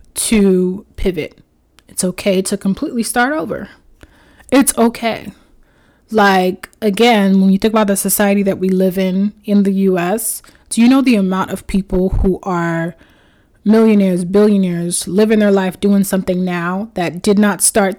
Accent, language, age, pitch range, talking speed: American, English, 20-39, 180-215 Hz, 155 wpm